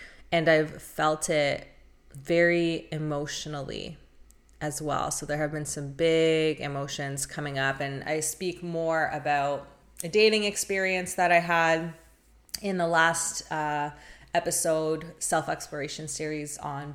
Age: 20-39